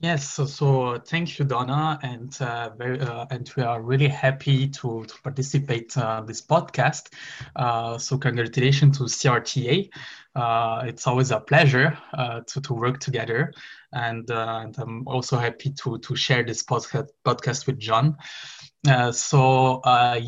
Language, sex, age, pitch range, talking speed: English, male, 20-39, 125-140 Hz, 155 wpm